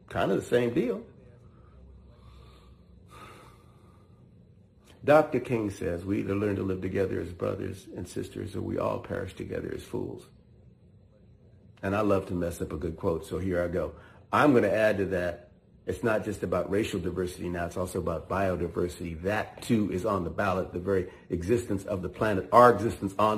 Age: 50-69